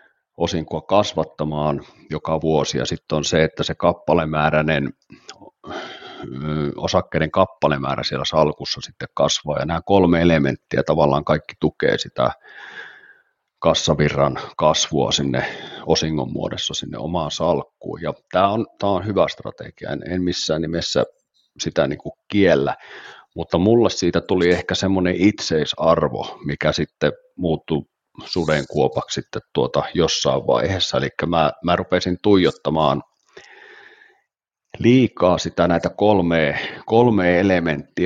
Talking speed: 120 wpm